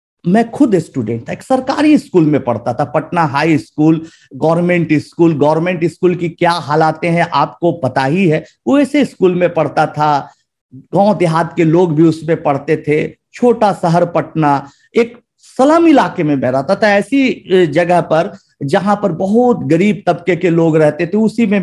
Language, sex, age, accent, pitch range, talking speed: Hindi, male, 50-69, native, 155-260 Hz, 170 wpm